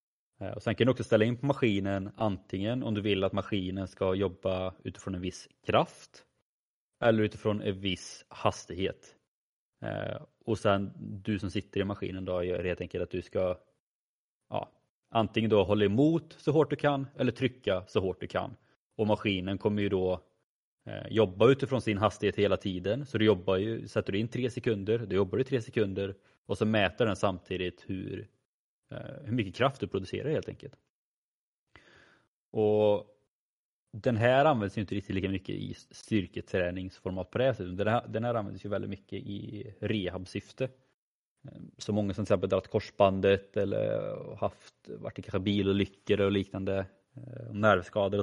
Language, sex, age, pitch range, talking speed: Swedish, male, 20-39, 95-115 Hz, 165 wpm